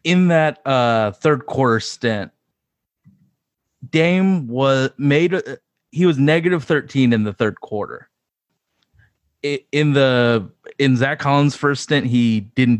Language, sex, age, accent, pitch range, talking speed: English, male, 30-49, American, 110-145 Hz, 120 wpm